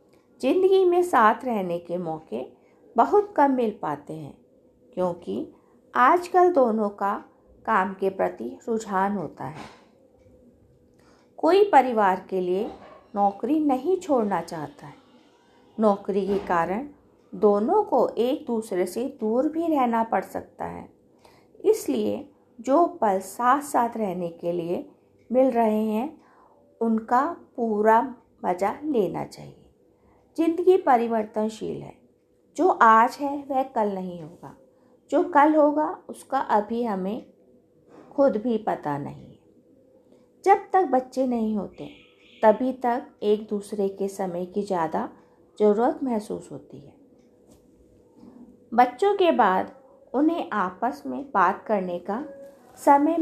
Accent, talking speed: native, 120 wpm